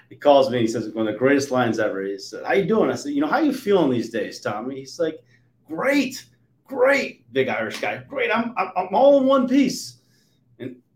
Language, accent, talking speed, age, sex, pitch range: English, American, 230 wpm, 30-49, male, 115-145 Hz